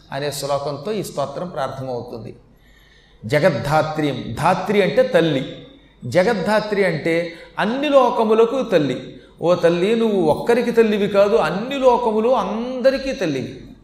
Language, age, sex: Telugu, 40-59, male